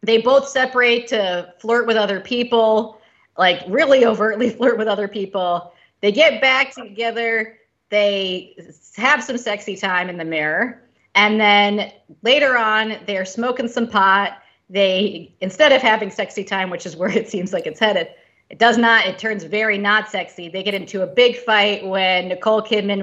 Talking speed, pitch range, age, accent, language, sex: 170 wpm, 175-230 Hz, 30-49, American, English, female